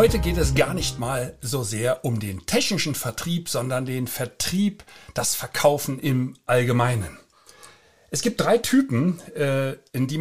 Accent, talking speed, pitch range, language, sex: German, 145 wpm, 125-170 Hz, German, male